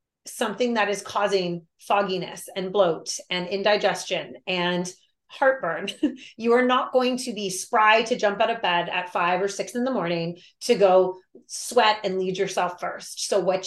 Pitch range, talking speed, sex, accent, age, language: 185-215 Hz, 170 wpm, female, American, 30-49, English